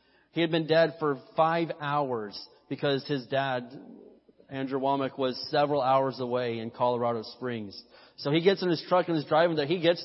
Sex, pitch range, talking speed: male, 130-160 Hz, 185 wpm